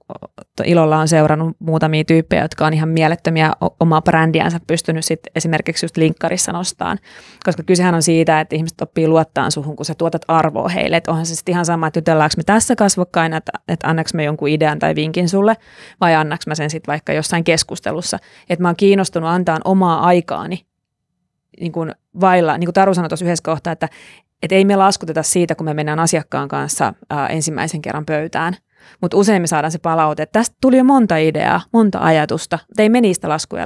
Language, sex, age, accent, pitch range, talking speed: Finnish, female, 30-49, native, 155-180 Hz, 185 wpm